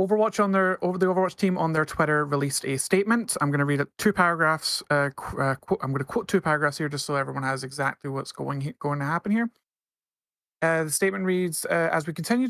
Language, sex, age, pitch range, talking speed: English, male, 30-49, 140-180 Hz, 230 wpm